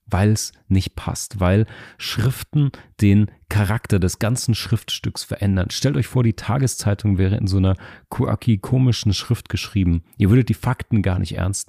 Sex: male